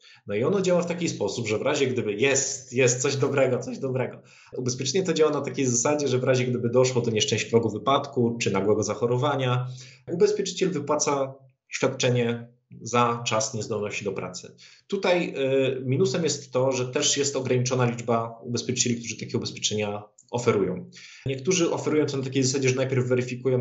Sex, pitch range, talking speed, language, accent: male, 115-135 Hz, 170 wpm, Polish, native